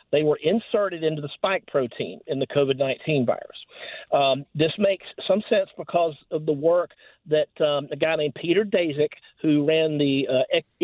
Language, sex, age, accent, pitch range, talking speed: English, male, 50-69, American, 150-195 Hz, 170 wpm